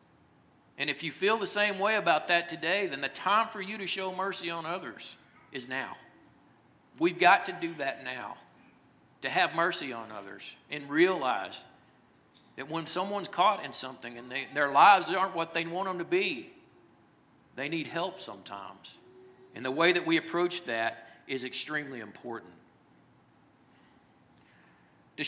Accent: American